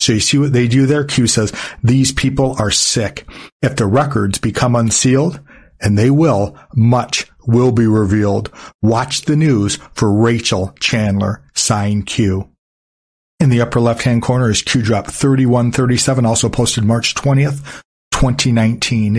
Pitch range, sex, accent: 105-135 Hz, male, American